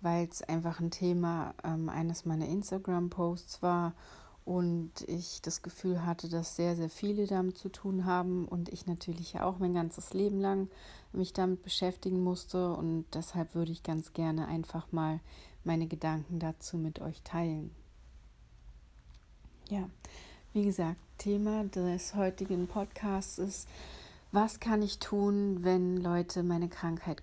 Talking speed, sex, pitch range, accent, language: 145 wpm, female, 165-185 Hz, German, German